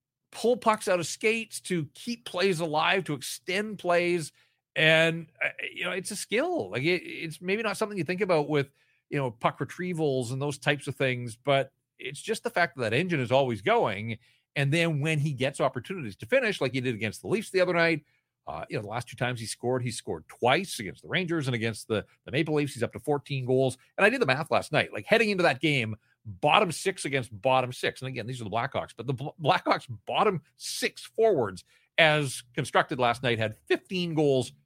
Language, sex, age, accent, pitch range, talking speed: English, male, 40-59, American, 125-170 Hz, 220 wpm